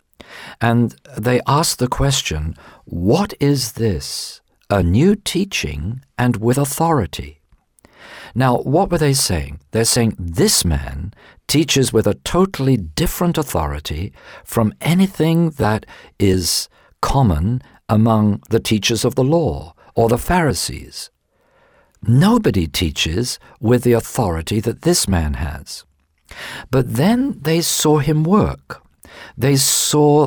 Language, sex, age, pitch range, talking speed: English, male, 50-69, 95-155 Hz, 120 wpm